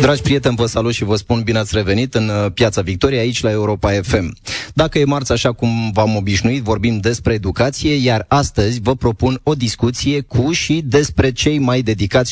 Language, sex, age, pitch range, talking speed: Romanian, male, 30-49, 110-135 Hz, 190 wpm